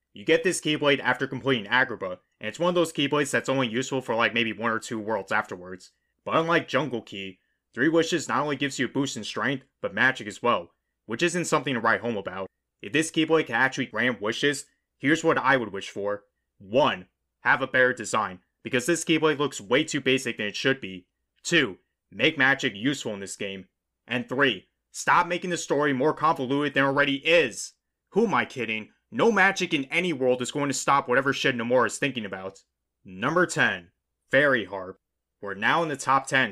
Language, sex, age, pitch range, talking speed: English, male, 30-49, 105-145 Hz, 205 wpm